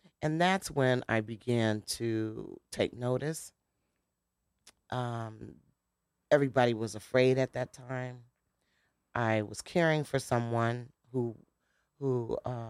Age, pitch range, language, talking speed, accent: 40-59, 115-145 Hz, English, 110 wpm, American